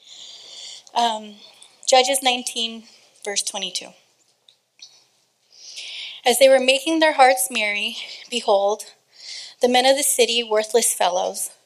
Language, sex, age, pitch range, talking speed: English, female, 30-49, 210-250 Hz, 105 wpm